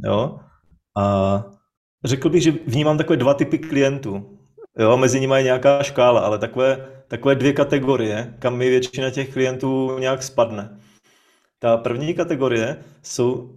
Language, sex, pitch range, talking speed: Czech, male, 115-135 Hz, 140 wpm